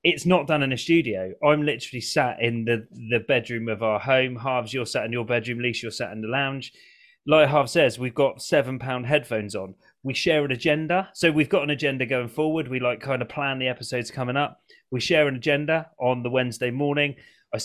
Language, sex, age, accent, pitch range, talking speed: English, male, 30-49, British, 125-155 Hz, 220 wpm